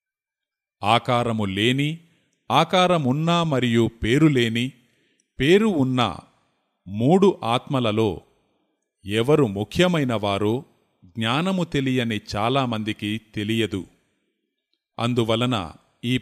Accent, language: native, Telugu